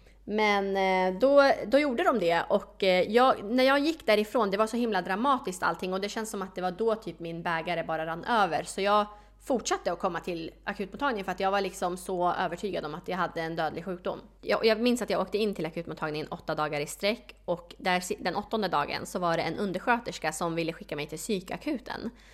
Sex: female